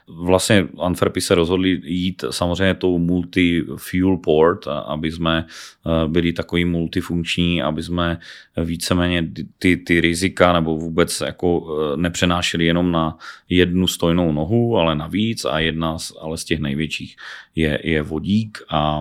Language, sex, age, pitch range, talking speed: Slovak, male, 30-49, 80-85 Hz, 135 wpm